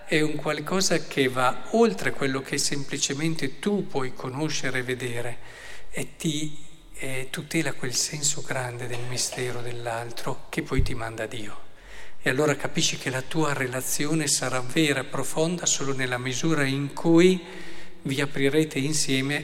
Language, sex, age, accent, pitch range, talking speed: Italian, male, 50-69, native, 130-160 Hz, 150 wpm